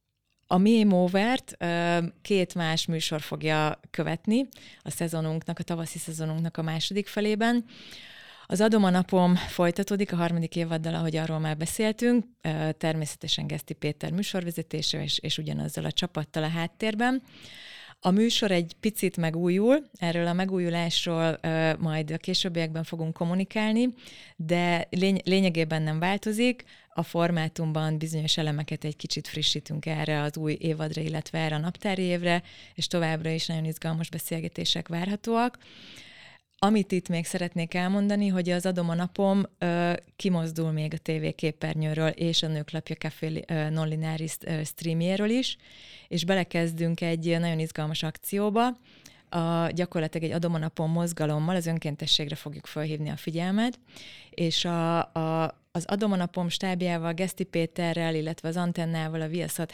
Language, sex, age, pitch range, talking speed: Hungarian, female, 30-49, 160-185 Hz, 125 wpm